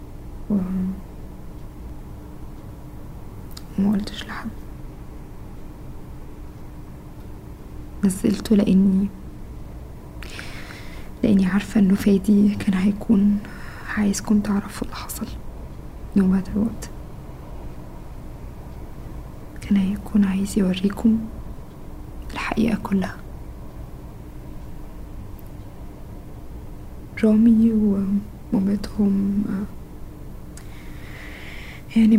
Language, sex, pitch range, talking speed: Arabic, female, 180-210 Hz, 50 wpm